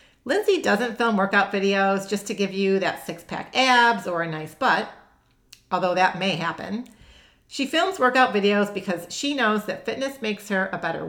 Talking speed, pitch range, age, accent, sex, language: 180 wpm, 185-235 Hz, 40-59, American, female, English